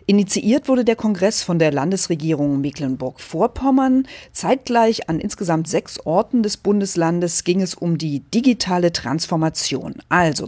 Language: German